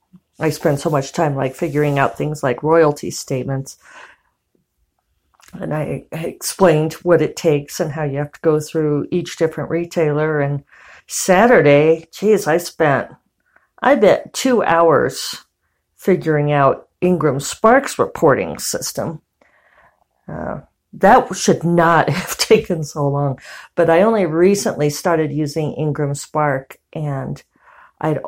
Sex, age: female, 50-69